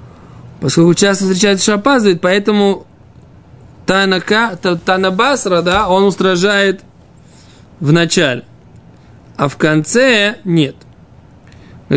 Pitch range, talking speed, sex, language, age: 155-205 Hz, 80 wpm, male, Russian, 20-39